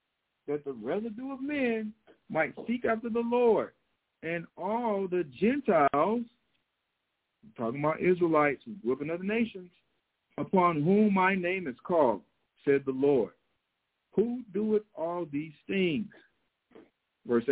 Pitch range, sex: 155-225 Hz, male